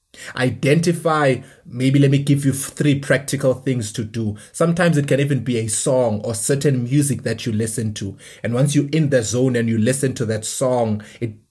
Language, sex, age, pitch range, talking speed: English, male, 20-39, 115-140 Hz, 200 wpm